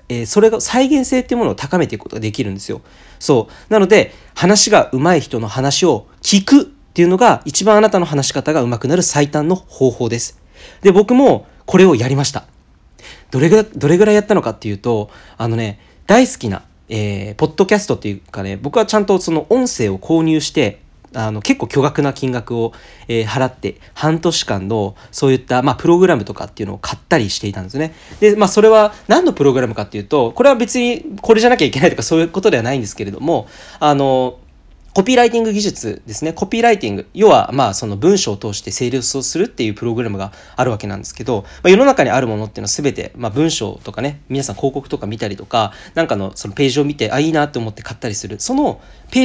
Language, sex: Japanese, male